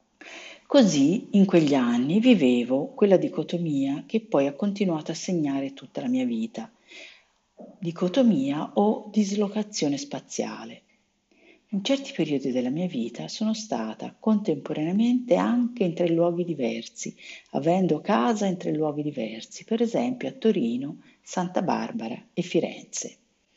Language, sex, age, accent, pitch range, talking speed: Italian, female, 50-69, native, 155-235 Hz, 125 wpm